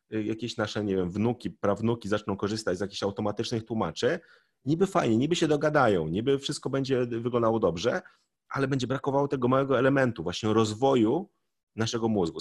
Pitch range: 100-130 Hz